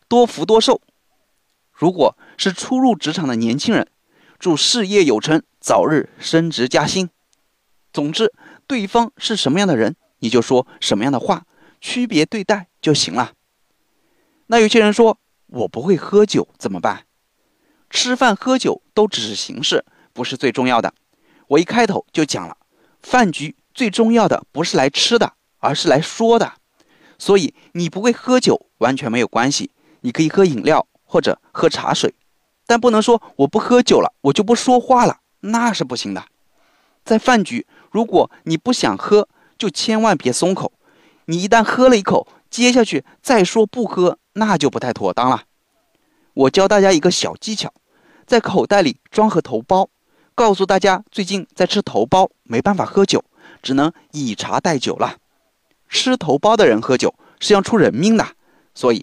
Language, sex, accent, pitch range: Chinese, male, native, 170-235 Hz